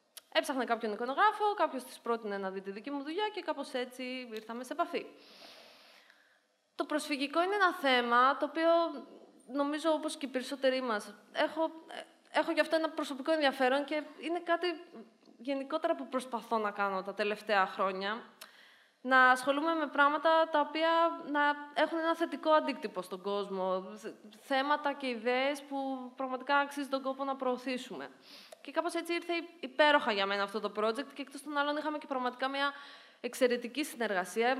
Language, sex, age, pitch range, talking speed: Greek, female, 20-39, 230-305 Hz, 160 wpm